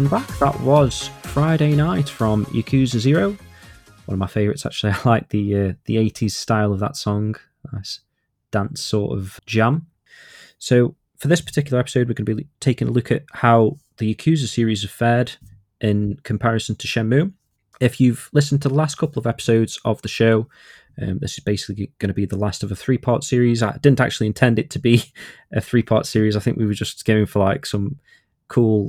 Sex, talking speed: male, 200 wpm